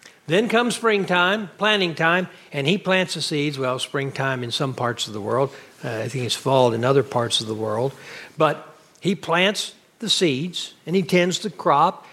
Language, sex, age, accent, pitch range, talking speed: English, male, 60-79, American, 140-180 Hz, 195 wpm